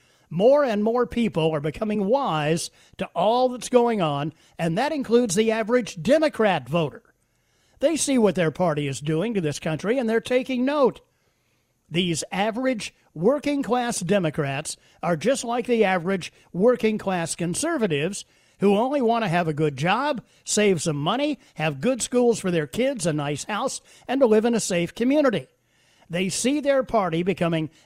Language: English